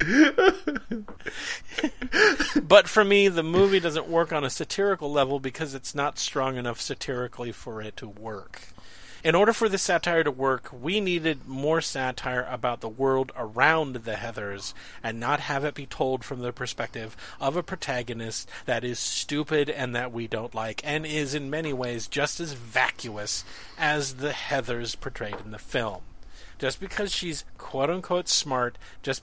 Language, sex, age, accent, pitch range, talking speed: English, male, 40-59, American, 125-175 Hz, 160 wpm